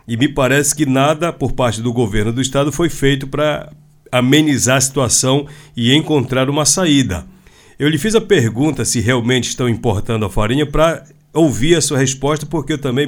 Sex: male